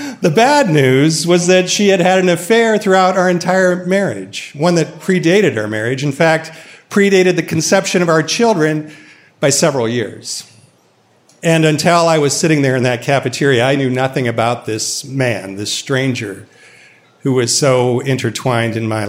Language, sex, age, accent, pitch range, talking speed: English, male, 40-59, American, 125-160 Hz, 165 wpm